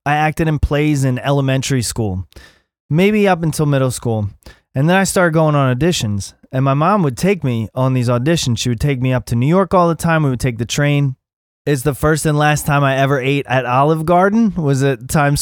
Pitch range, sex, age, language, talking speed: 120-155 Hz, male, 20-39, English, 230 wpm